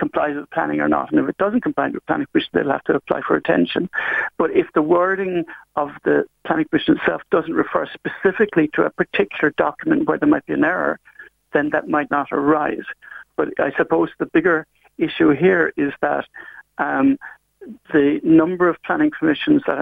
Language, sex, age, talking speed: English, male, 60-79, 190 wpm